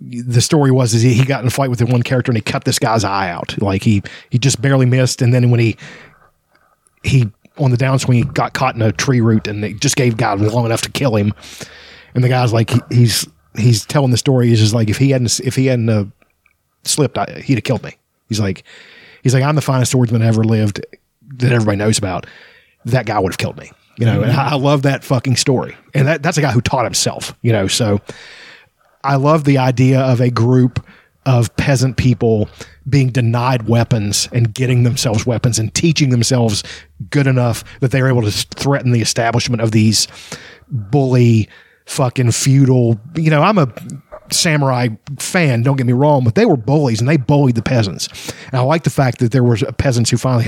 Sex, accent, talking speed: male, American, 220 wpm